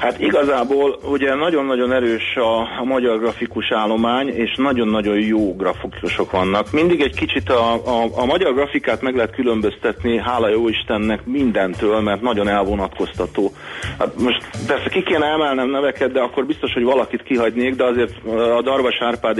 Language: Hungarian